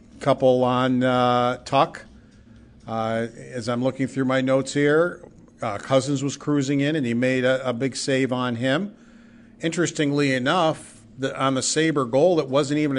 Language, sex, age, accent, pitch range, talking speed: English, male, 50-69, American, 120-145 Hz, 165 wpm